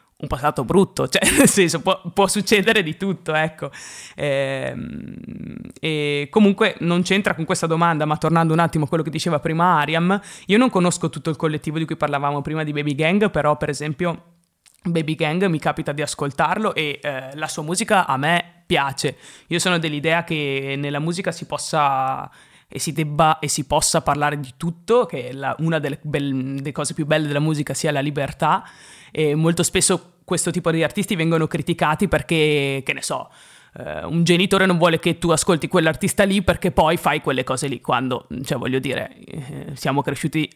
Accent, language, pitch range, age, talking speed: native, Italian, 150-175 Hz, 20-39, 185 wpm